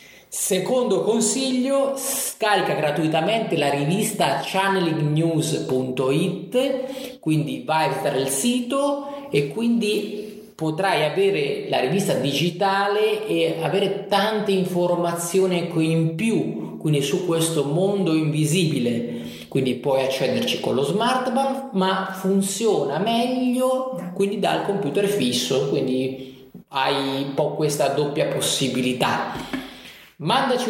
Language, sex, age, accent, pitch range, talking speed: Italian, male, 30-49, native, 145-200 Hz, 95 wpm